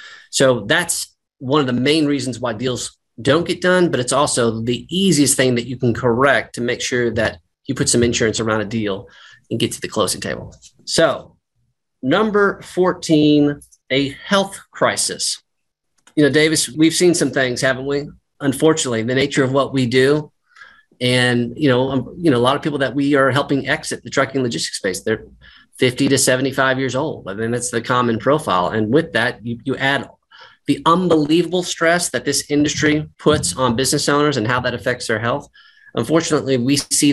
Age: 30-49